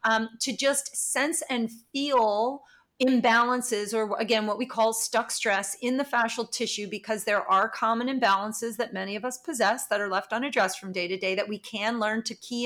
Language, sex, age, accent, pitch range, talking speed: English, female, 30-49, American, 205-235 Hz, 200 wpm